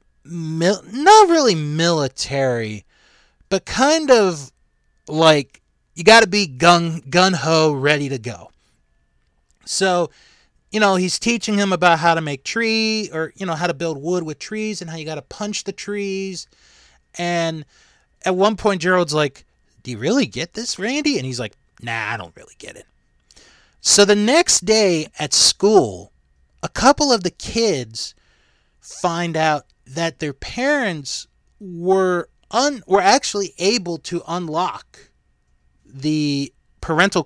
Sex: male